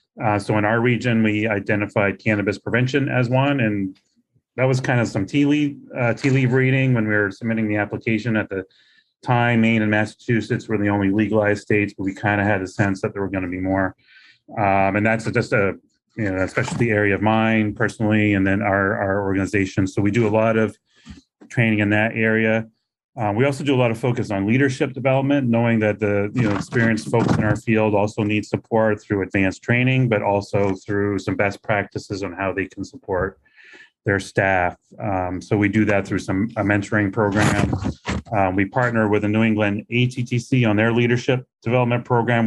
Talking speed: 205 wpm